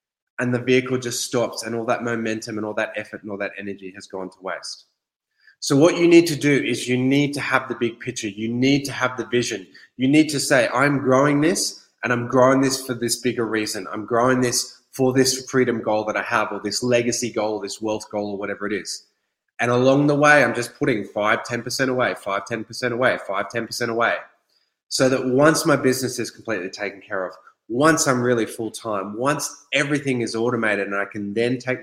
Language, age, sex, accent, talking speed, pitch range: English, 20-39, male, Australian, 220 wpm, 105-130 Hz